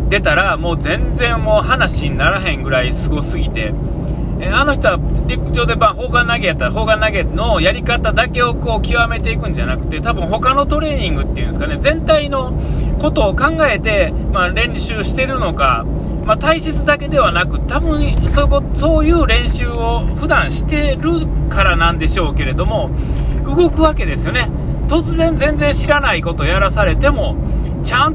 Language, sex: Japanese, male